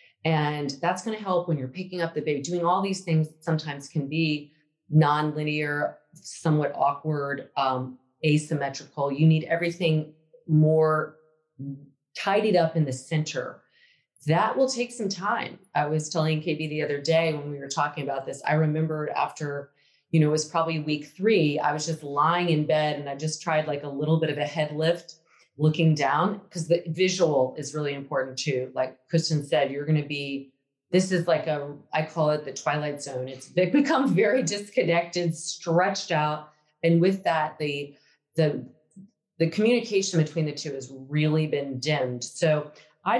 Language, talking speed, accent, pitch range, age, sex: English, 175 wpm, American, 145-175 Hz, 30-49, female